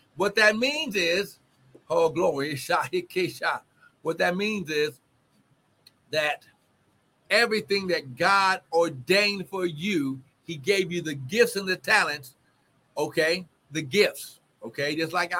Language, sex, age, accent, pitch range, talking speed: English, male, 60-79, American, 145-210 Hz, 120 wpm